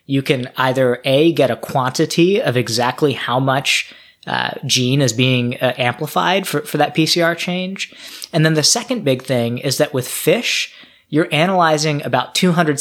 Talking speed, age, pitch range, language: 170 wpm, 20-39, 125-155 Hz, English